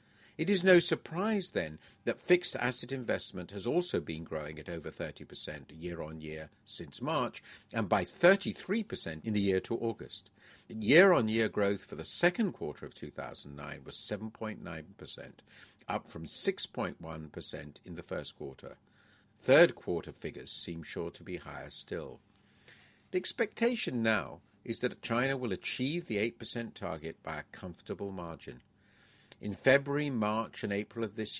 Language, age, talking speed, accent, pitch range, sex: English, 50-69, 145 wpm, British, 90-130 Hz, male